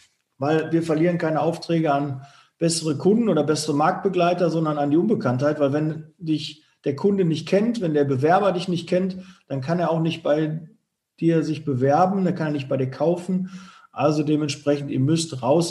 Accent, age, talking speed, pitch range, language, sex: German, 40-59, 185 wpm, 145-185 Hz, German, male